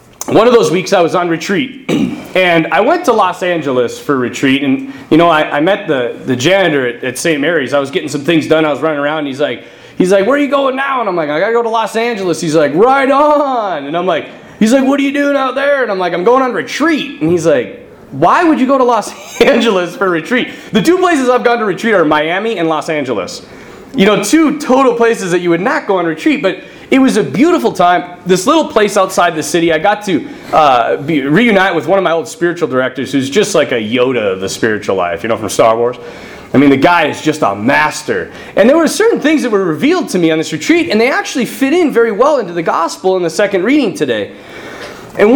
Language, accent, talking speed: English, American, 255 wpm